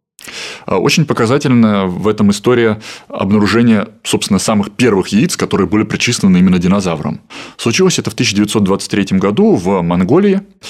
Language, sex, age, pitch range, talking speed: Russian, male, 20-39, 95-155 Hz, 125 wpm